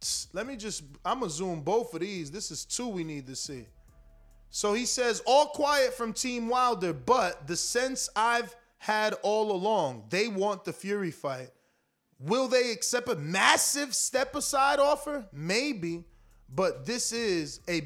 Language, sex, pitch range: English, male, 165-240 Hz